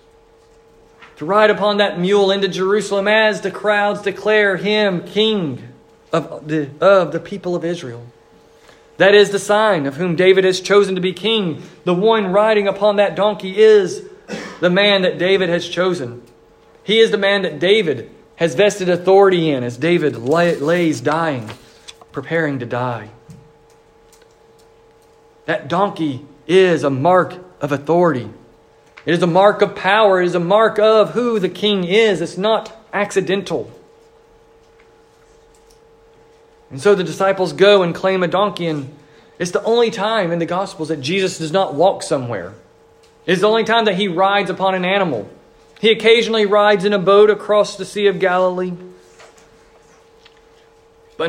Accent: American